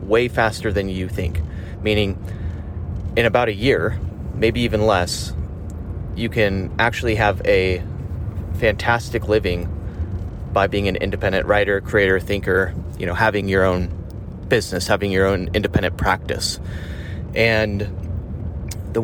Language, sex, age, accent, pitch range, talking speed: English, male, 30-49, American, 90-110 Hz, 125 wpm